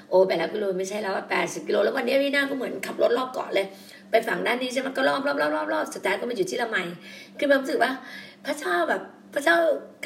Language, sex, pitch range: Thai, female, 225-285 Hz